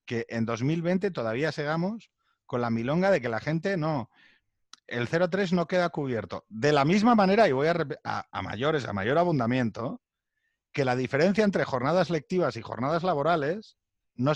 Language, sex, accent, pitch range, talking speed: Spanish, male, Spanish, 115-175 Hz, 170 wpm